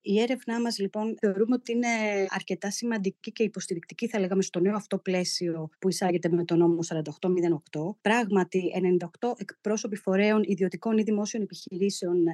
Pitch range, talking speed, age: 180-230 Hz, 150 wpm, 30-49